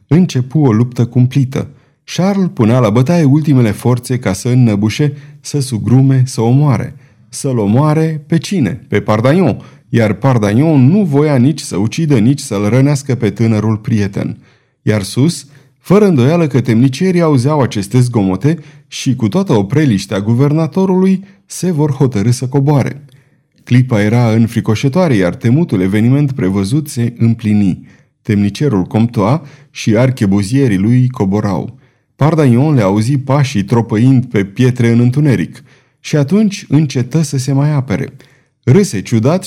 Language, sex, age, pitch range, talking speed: Romanian, male, 30-49, 115-145 Hz, 135 wpm